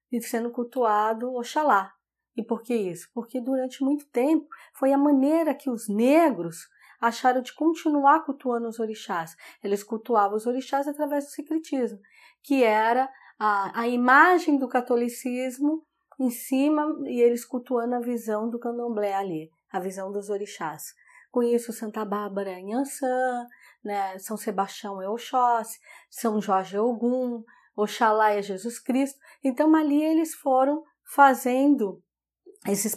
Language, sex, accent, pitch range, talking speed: Portuguese, female, Brazilian, 215-280 Hz, 140 wpm